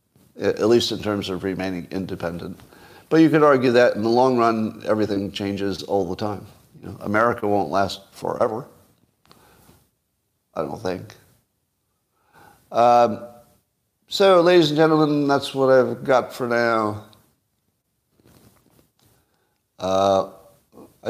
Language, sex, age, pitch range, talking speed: English, male, 50-69, 95-125 Hz, 115 wpm